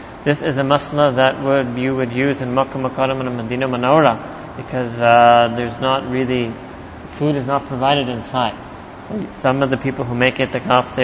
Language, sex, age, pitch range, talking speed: English, male, 30-49, 125-150 Hz, 185 wpm